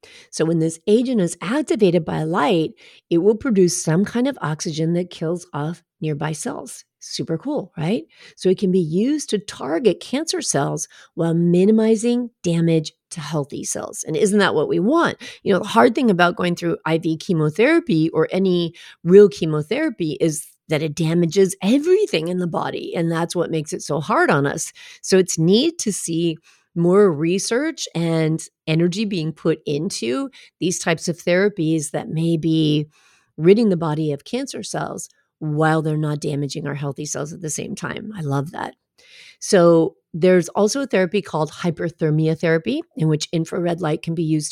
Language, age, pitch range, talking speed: English, 40-59, 160-200 Hz, 175 wpm